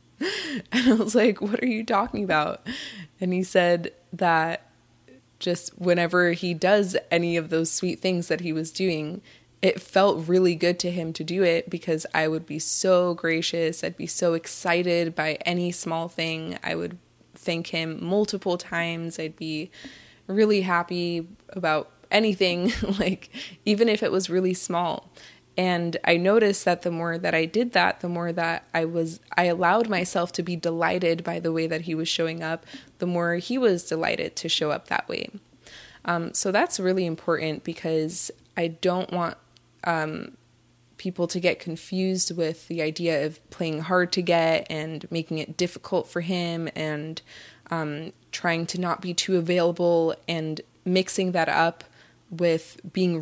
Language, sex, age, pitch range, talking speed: English, female, 20-39, 160-185 Hz, 170 wpm